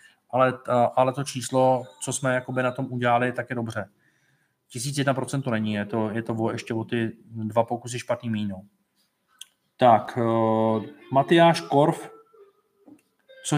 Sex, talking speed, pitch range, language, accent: male, 135 wpm, 125-175 Hz, Czech, native